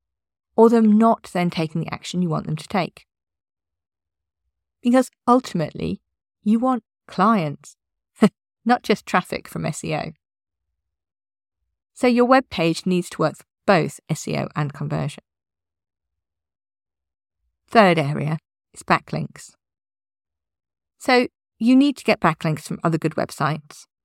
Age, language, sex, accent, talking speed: 40-59, English, female, British, 120 wpm